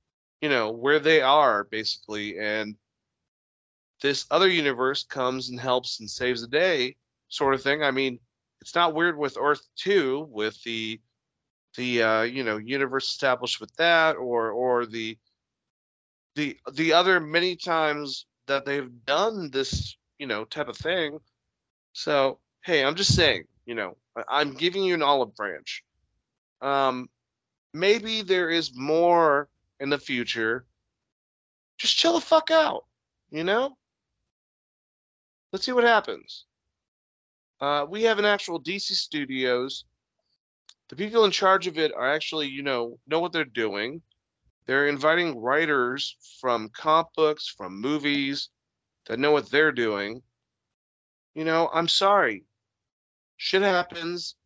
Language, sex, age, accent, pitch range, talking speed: English, male, 30-49, American, 115-165 Hz, 140 wpm